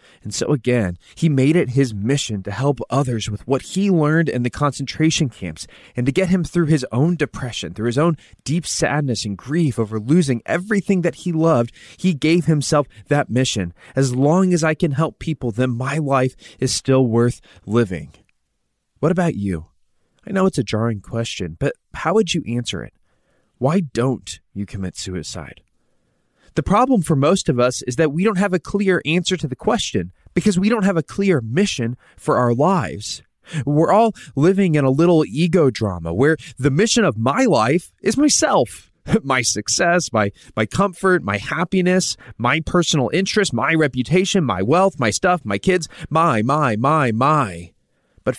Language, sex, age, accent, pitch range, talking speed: English, male, 20-39, American, 120-175 Hz, 180 wpm